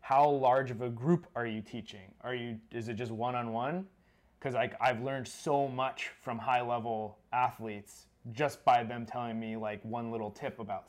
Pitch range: 105-125 Hz